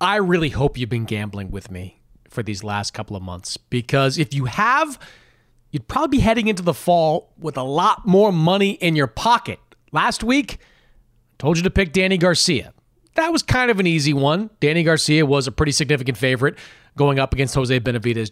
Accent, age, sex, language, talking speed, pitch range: American, 40-59, male, English, 195 wpm, 125-180 Hz